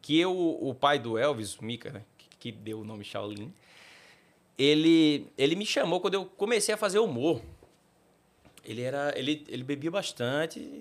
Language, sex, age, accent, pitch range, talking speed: Portuguese, male, 20-39, Brazilian, 110-150 Hz, 165 wpm